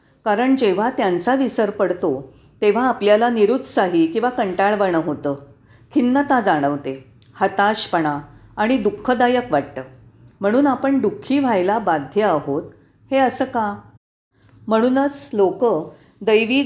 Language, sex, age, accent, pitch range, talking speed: Marathi, female, 40-59, native, 170-250 Hz, 105 wpm